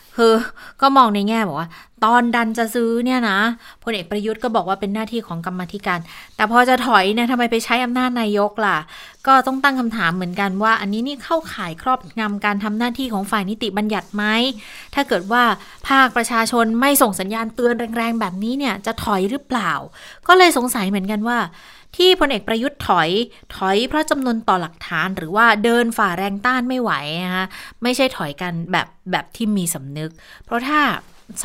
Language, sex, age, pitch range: Thai, female, 20-39, 190-240 Hz